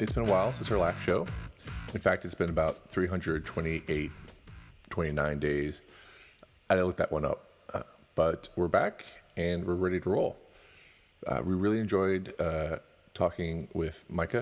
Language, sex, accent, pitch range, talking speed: English, male, American, 85-105 Hz, 160 wpm